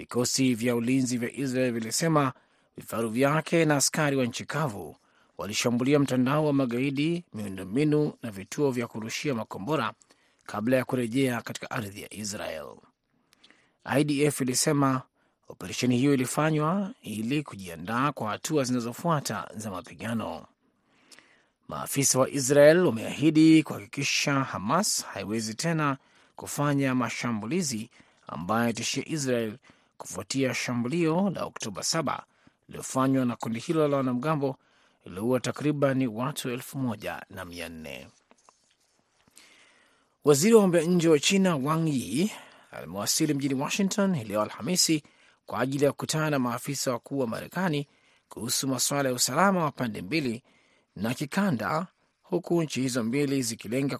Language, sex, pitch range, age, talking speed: Swahili, male, 120-150 Hz, 30-49, 115 wpm